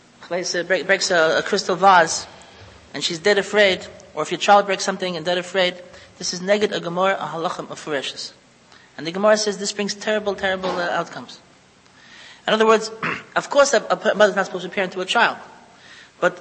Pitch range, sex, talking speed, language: 180-215 Hz, male, 160 wpm, English